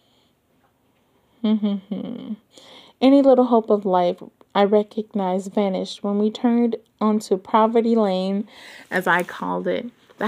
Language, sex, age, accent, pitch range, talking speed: English, female, 30-49, American, 200-225 Hz, 125 wpm